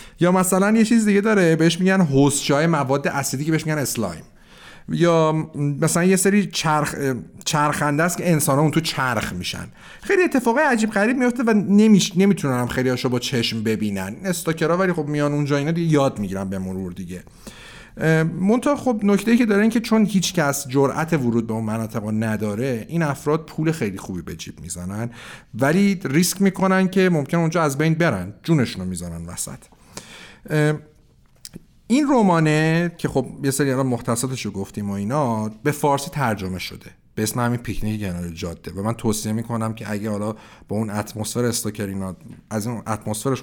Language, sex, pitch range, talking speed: Persian, male, 110-175 Hz, 175 wpm